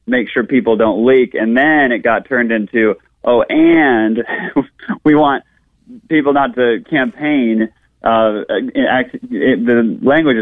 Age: 30-49